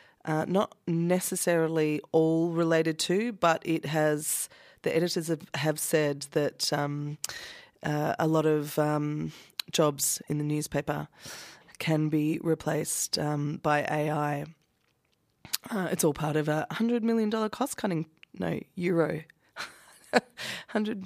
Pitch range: 150-180 Hz